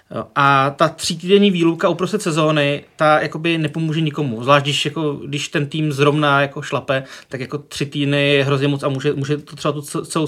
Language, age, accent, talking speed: Czech, 30-49, native, 175 wpm